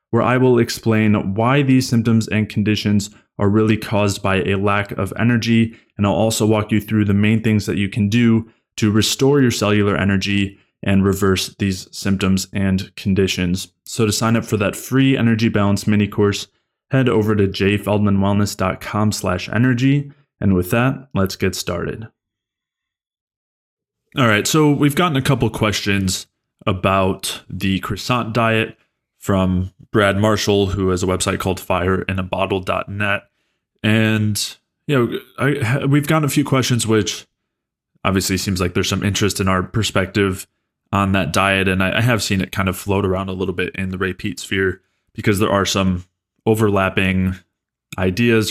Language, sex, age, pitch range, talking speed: English, male, 20-39, 95-115 Hz, 160 wpm